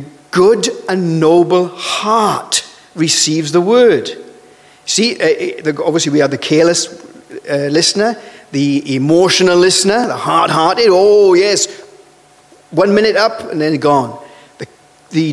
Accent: British